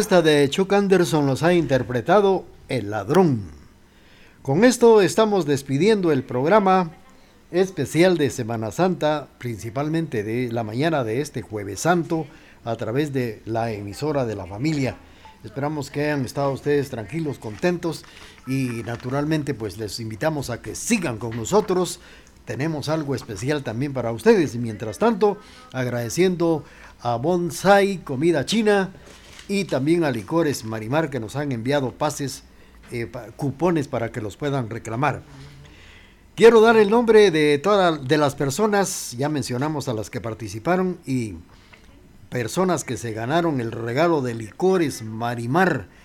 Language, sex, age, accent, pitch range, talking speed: Spanish, male, 50-69, Mexican, 115-165 Hz, 140 wpm